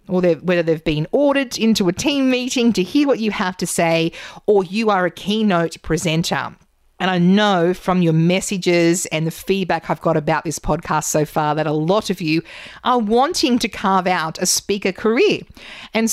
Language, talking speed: English, 195 wpm